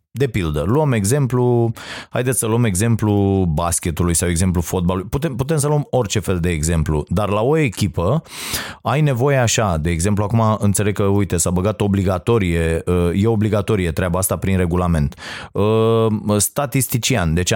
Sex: male